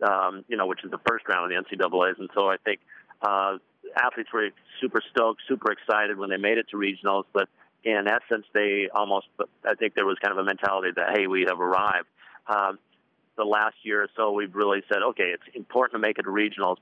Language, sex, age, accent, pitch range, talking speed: English, male, 50-69, American, 95-105 Hz, 225 wpm